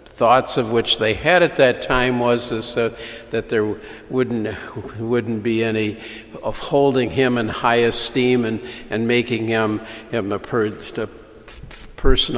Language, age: English, 50-69